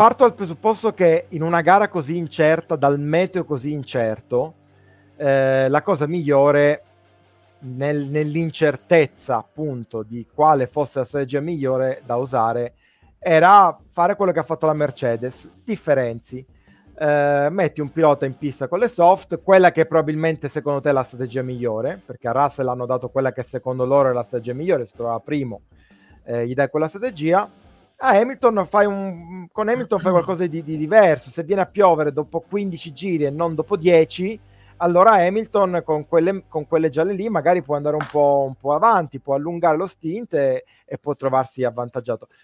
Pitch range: 135-185 Hz